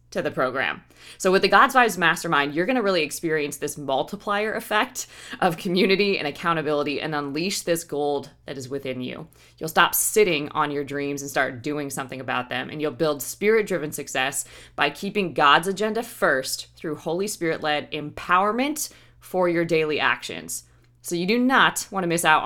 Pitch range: 145-185 Hz